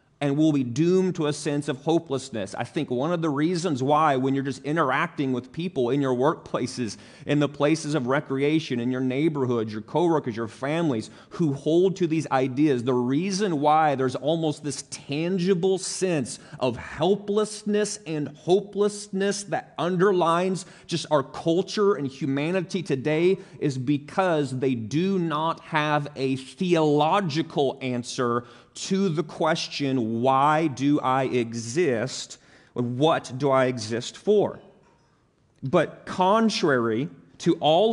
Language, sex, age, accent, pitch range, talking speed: English, male, 30-49, American, 135-175 Hz, 140 wpm